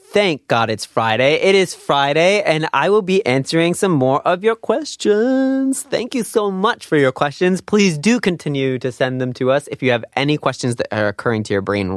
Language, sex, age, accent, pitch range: Korean, male, 30-49, American, 115-180 Hz